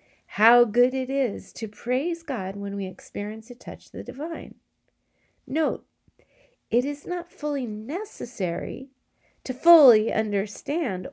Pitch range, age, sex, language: 190-275 Hz, 50-69, female, English